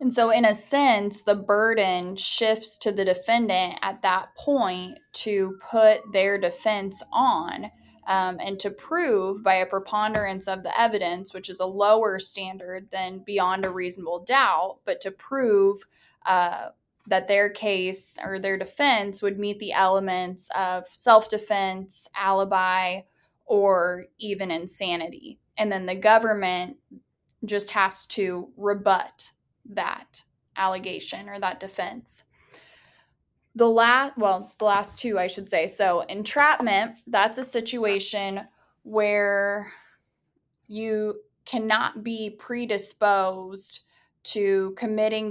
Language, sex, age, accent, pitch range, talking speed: English, female, 10-29, American, 190-215 Hz, 125 wpm